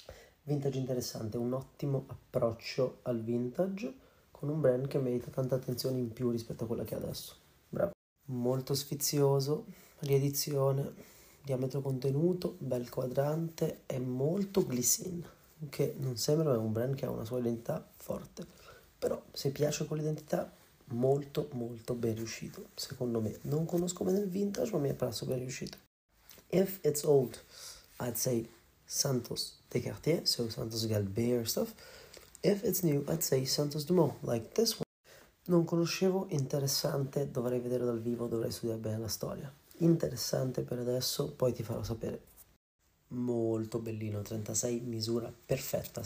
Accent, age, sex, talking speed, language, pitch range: native, 30-49, male, 145 wpm, Italian, 115-150 Hz